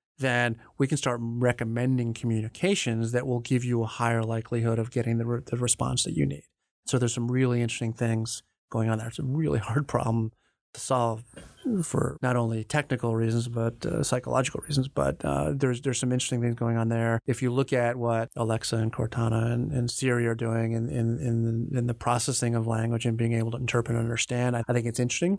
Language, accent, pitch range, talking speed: English, American, 115-125 Hz, 215 wpm